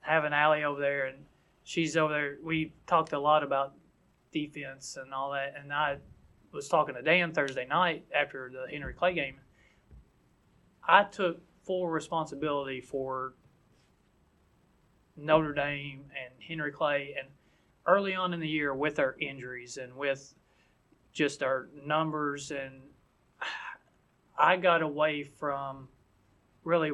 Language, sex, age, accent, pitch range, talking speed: English, male, 30-49, American, 135-155 Hz, 135 wpm